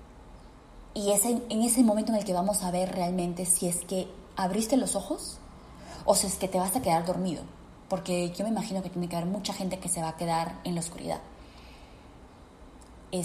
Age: 20-39